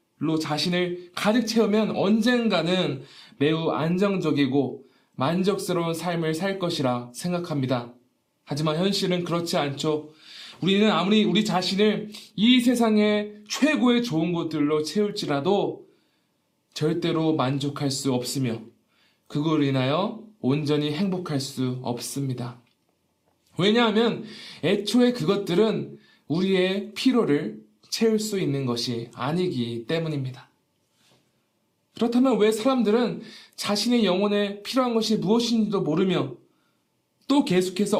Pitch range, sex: 145-210 Hz, male